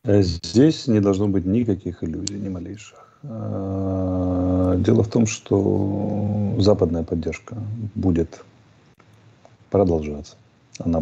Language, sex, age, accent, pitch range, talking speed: Russian, male, 40-59, native, 90-115 Hz, 95 wpm